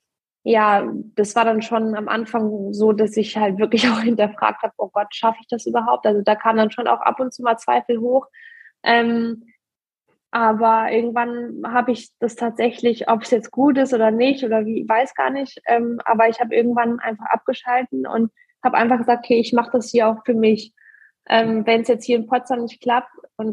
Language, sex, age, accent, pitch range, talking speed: German, female, 20-39, German, 220-245 Hz, 200 wpm